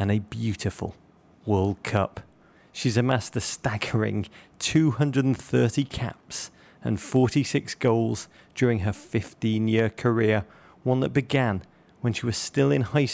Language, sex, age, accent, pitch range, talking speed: English, male, 30-49, British, 105-130 Hz, 125 wpm